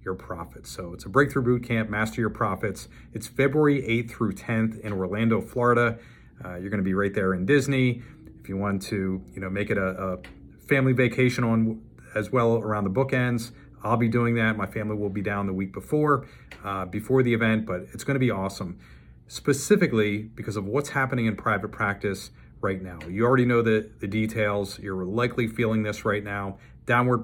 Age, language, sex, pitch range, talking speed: 40-59, English, male, 100-120 Hz, 200 wpm